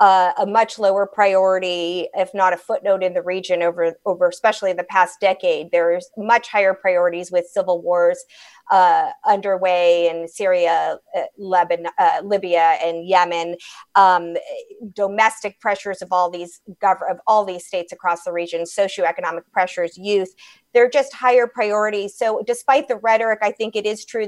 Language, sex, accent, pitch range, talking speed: English, female, American, 185-230 Hz, 165 wpm